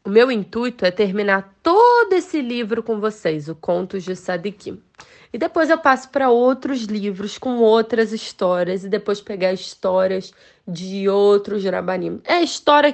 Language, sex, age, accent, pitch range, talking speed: Portuguese, female, 20-39, Brazilian, 195-260 Hz, 155 wpm